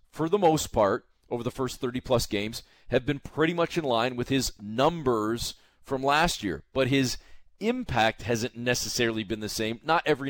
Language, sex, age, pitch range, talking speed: English, male, 40-59, 110-135 Hz, 180 wpm